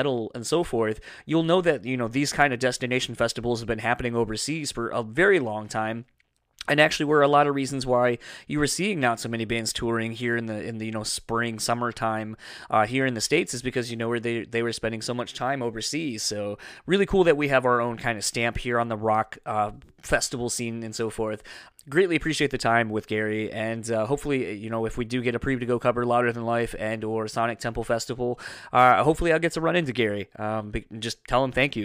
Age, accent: 20-39, American